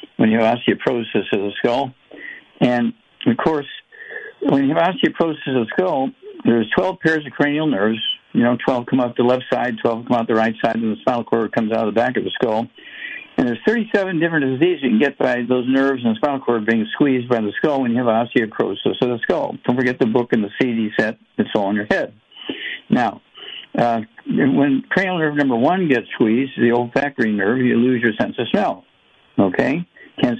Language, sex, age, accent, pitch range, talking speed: English, male, 60-79, American, 115-155 Hz, 215 wpm